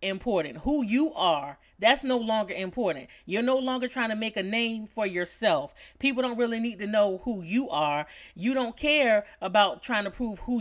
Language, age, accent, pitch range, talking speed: English, 30-49, American, 195-245 Hz, 200 wpm